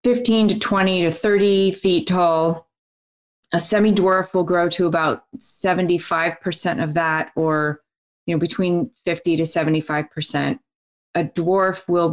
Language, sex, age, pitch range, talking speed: English, female, 30-49, 155-200 Hz, 130 wpm